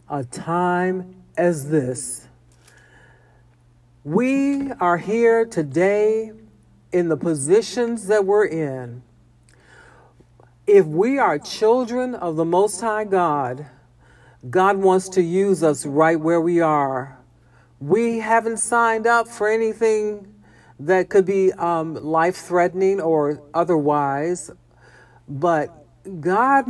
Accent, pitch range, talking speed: American, 145-215 Hz, 105 wpm